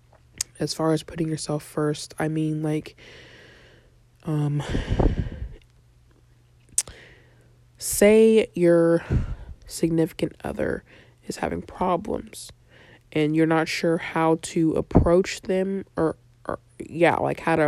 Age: 20-39